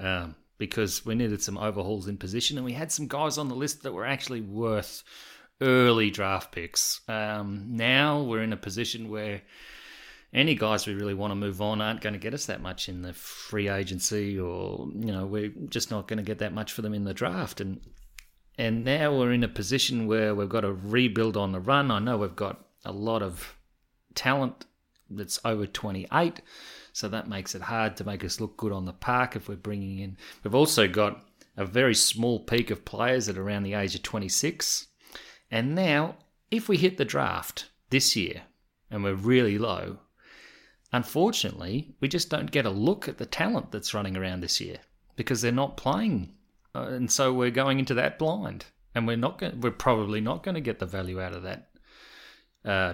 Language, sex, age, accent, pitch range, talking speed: English, male, 30-49, Australian, 100-125 Hz, 205 wpm